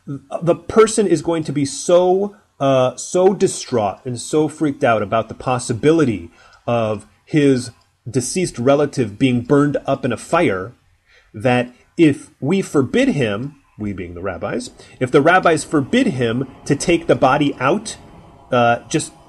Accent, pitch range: American, 105-150 Hz